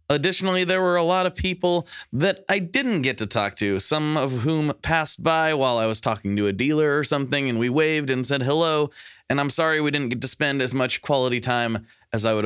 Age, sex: 20-39, male